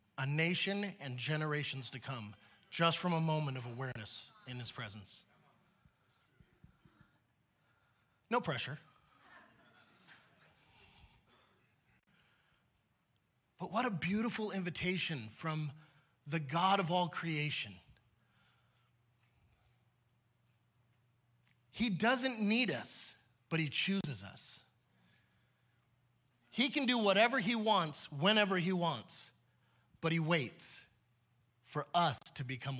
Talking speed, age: 95 wpm, 30-49